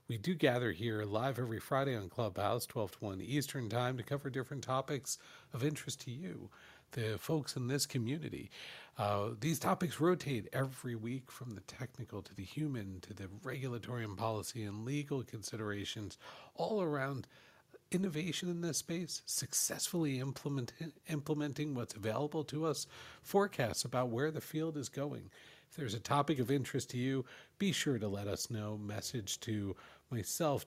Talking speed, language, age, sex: 165 wpm, English, 50-69, male